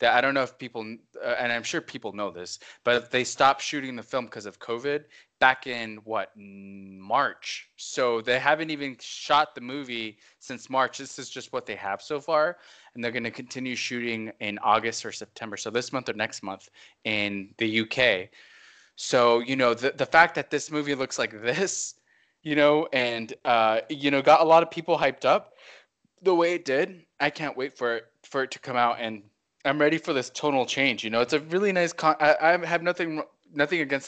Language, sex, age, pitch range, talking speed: English, male, 20-39, 110-145 Hz, 215 wpm